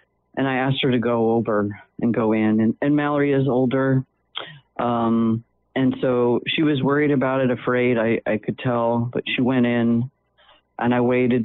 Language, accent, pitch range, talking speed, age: English, American, 110-130 Hz, 185 wpm, 40-59